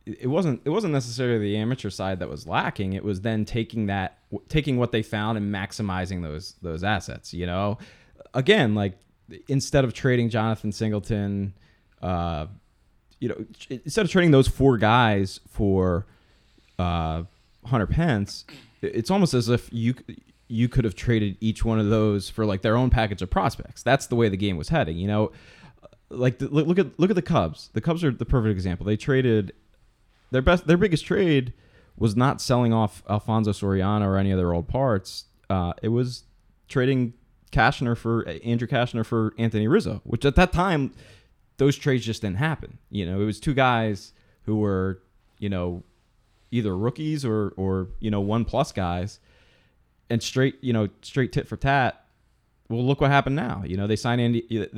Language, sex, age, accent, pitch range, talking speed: English, male, 20-39, American, 100-125 Hz, 185 wpm